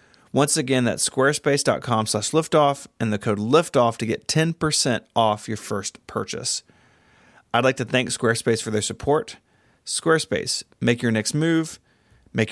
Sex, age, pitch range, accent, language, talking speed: male, 30-49, 110-135 Hz, American, English, 150 wpm